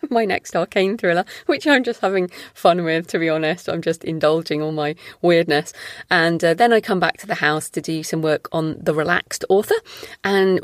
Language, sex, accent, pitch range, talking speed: English, female, British, 160-210 Hz, 210 wpm